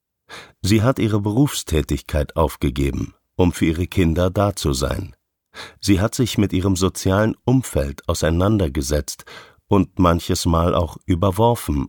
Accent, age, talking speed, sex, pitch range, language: German, 50-69, 125 wpm, male, 75-100 Hz, German